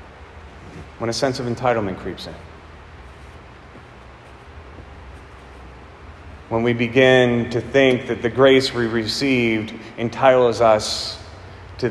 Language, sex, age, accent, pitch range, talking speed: English, male, 30-49, American, 105-140 Hz, 100 wpm